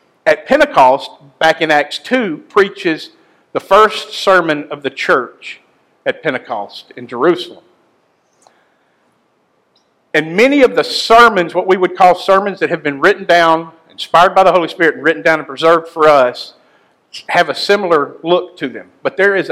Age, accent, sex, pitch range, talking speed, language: 50-69, American, male, 150-200 Hz, 165 wpm, English